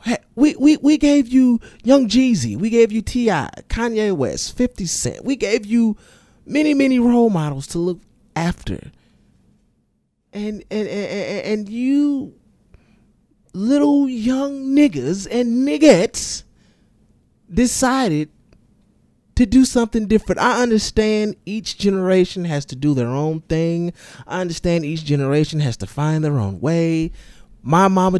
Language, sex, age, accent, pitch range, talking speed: English, male, 30-49, American, 145-230 Hz, 135 wpm